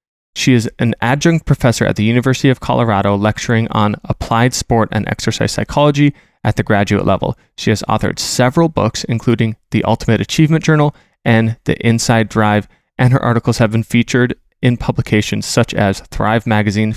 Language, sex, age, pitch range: English, male, 20-39, 110-130 Hz